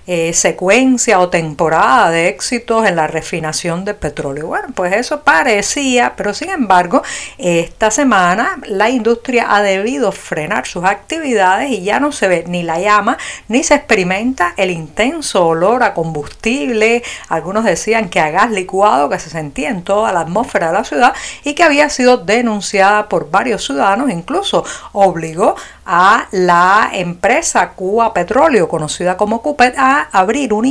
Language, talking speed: Spanish, 155 wpm